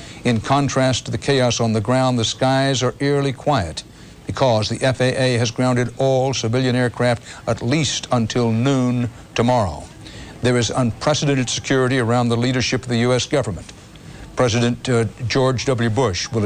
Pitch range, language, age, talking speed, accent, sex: 115-135 Hz, English, 60-79, 155 wpm, American, male